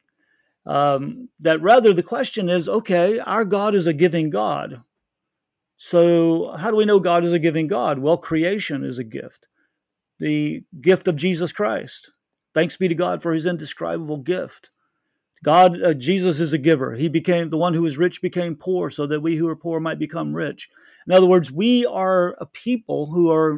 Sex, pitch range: male, 160-210 Hz